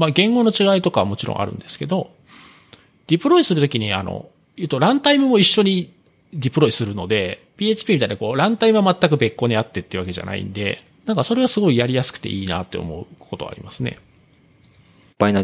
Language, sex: Japanese, male